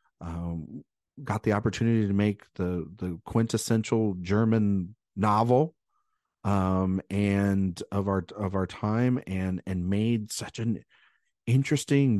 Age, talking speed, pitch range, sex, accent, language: 40-59, 120 wpm, 90-120 Hz, male, American, English